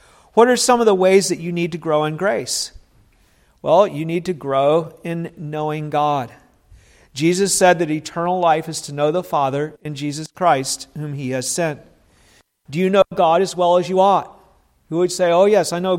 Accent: American